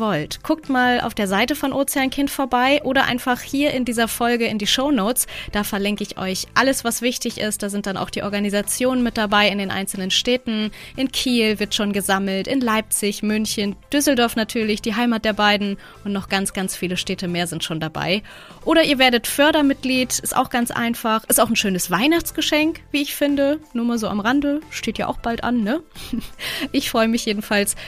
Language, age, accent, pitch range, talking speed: German, 20-39, German, 190-255 Hz, 200 wpm